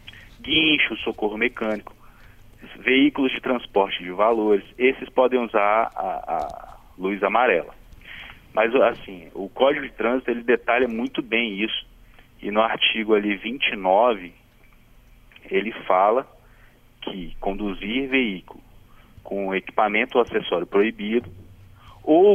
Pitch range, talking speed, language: 105-130 Hz, 110 wpm, Portuguese